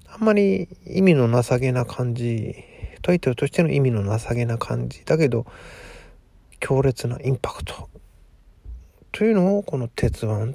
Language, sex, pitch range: Japanese, male, 100-140 Hz